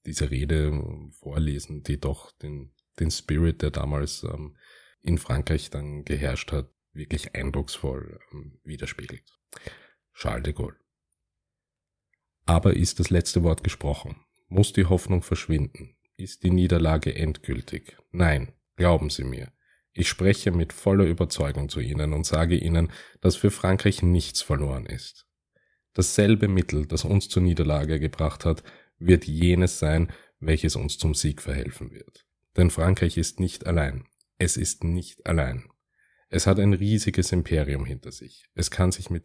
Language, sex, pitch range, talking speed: German, male, 75-90 Hz, 145 wpm